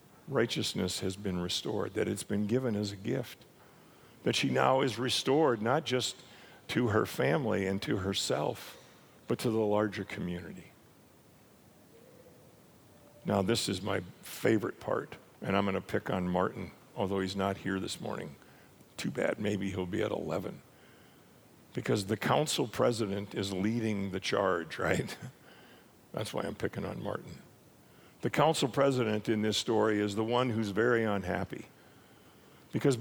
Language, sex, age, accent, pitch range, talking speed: English, male, 50-69, American, 100-125 Hz, 150 wpm